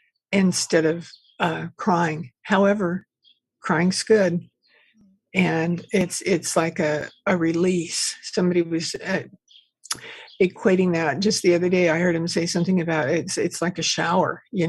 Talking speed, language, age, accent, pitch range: 145 wpm, English, 60-79, American, 170-210 Hz